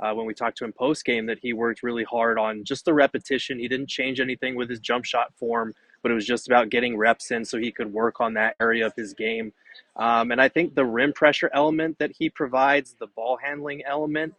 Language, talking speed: English, 245 wpm